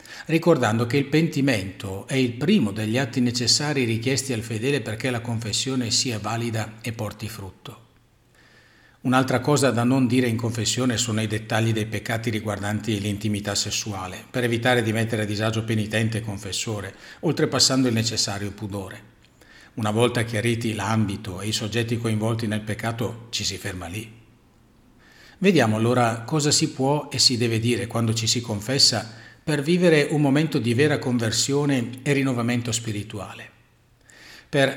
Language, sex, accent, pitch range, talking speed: Italian, male, native, 110-135 Hz, 150 wpm